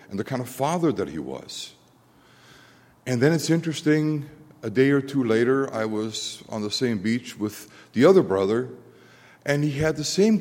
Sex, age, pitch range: male, 60-79, 100-135 Hz